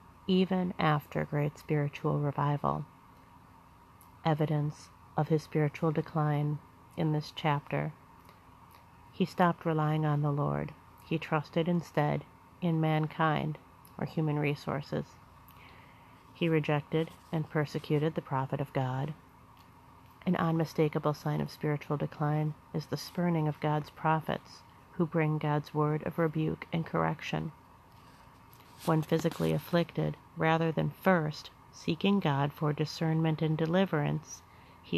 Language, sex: English, female